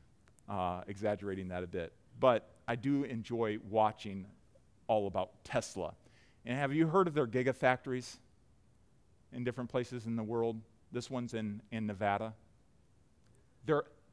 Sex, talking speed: male, 135 wpm